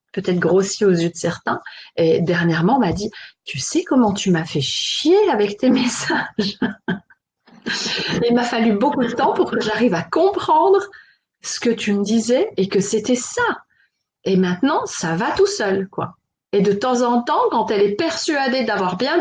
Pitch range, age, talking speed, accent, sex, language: 185-260 Hz, 30-49, 190 wpm, French, female, French